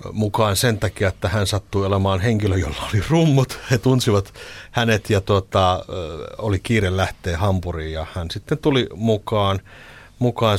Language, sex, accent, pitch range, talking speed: Finnish, male, native, 90-110 Hz, 145 wpm